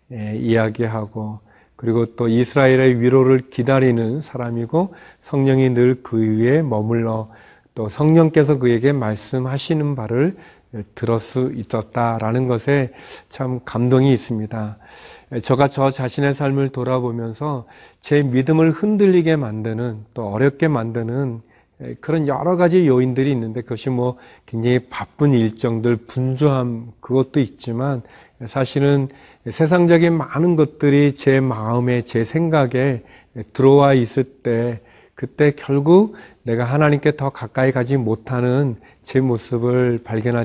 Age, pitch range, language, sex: 40-59, 115-140 Hz, Korean, male